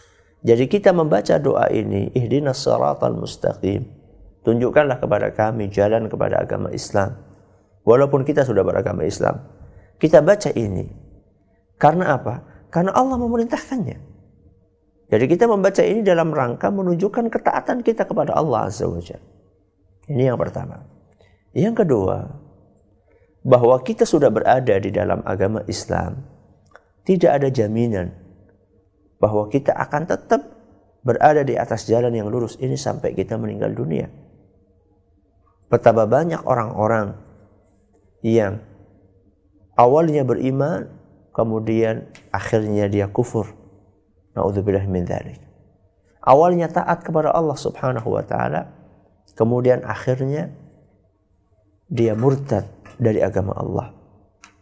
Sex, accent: male, native